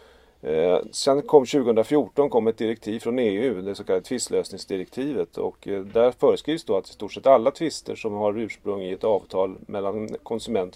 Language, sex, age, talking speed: Swedish, male, 30-49, 165 wpm